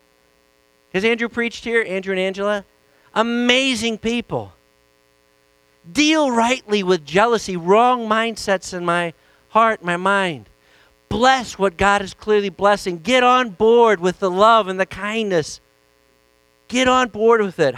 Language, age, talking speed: English, 50-69, 135 wpm